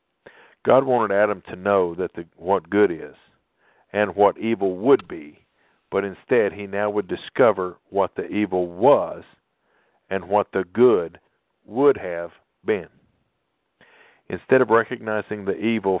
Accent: American